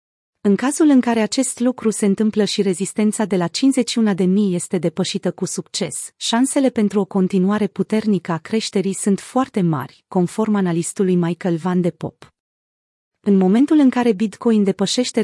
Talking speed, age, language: 155 wpm, 30-49, Romanian